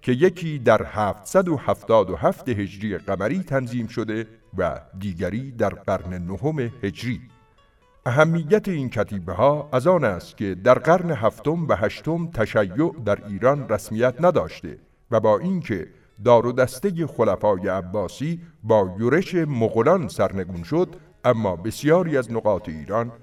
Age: 50-69